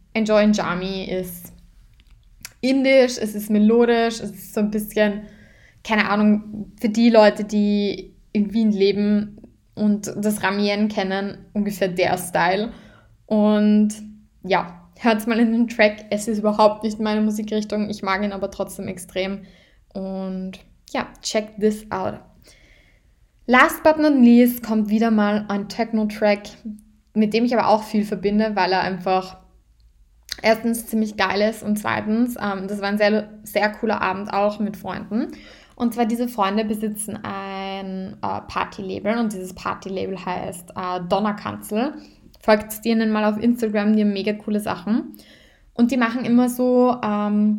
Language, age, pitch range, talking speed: German, 10-29, 200-220 Hz, 150 wpm